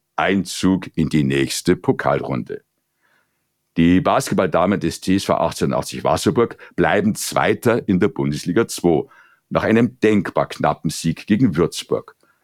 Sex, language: male, German